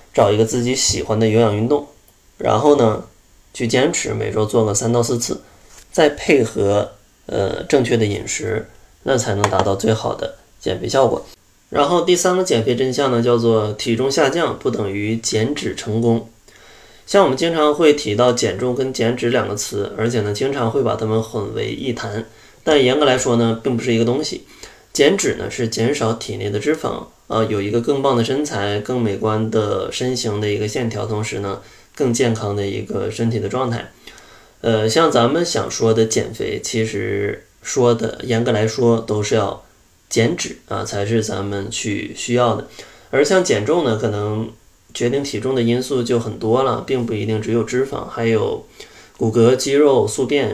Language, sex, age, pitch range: Chinese, male, 20-39, 105-125 Hz